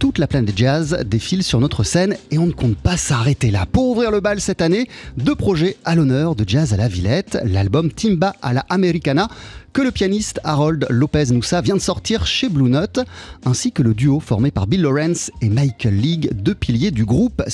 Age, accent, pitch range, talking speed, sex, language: 30-49, French, 125-195 Hz, 210 wpm, male, French